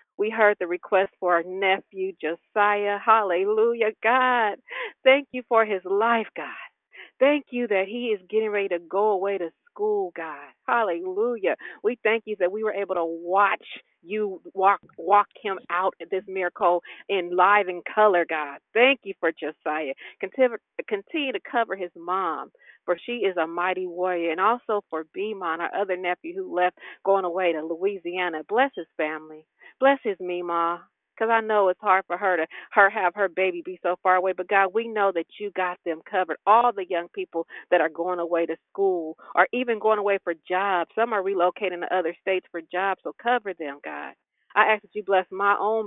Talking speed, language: 190 wpm, English